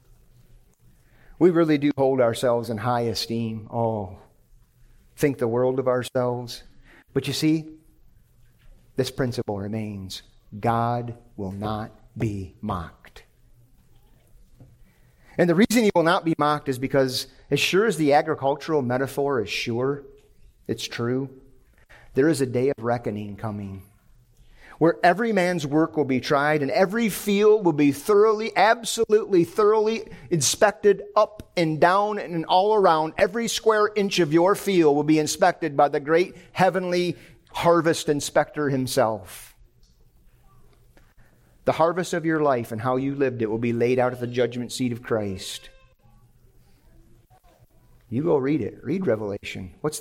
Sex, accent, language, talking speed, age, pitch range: male, American, English, 140 wpm, 40-59, 120-165 Hz